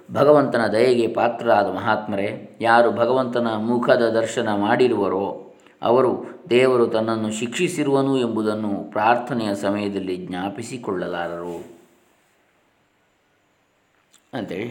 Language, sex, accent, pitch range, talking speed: Kannada, male, native, 105-130 Hz, 80 wpm